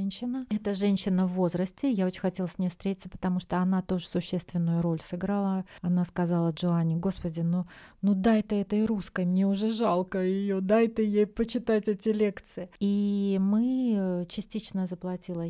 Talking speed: 165 wpm